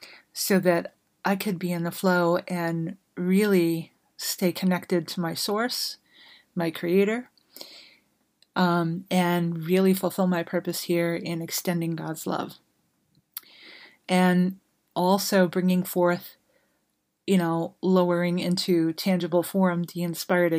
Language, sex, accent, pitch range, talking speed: English, female, American, 170-190 Hz, 115 wpm